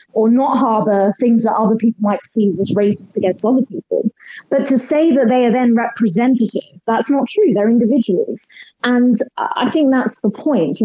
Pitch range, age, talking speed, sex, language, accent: 200-245 Hz, 20-39, 190 wpm, female, English, British